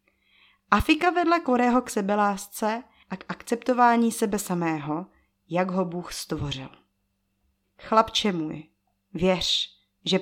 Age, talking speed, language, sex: 30-49, 105 wpm, Czech, female